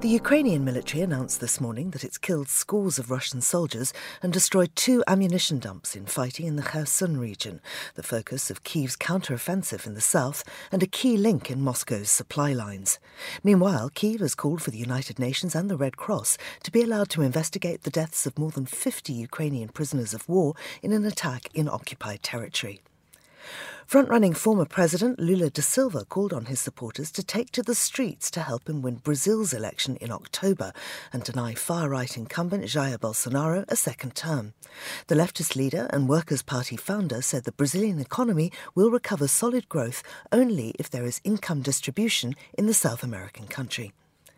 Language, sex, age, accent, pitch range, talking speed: English, female, 40-59, British, 125-190 Hz, 175 wpm